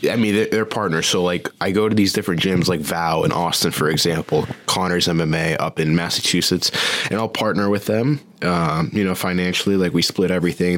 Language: English